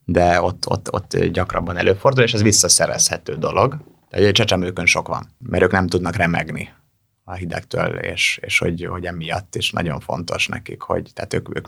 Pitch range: 90-105 Hz